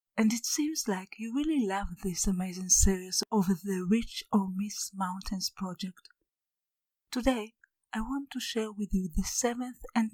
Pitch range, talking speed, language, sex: 195-235 Hz, 160 wpm, English, female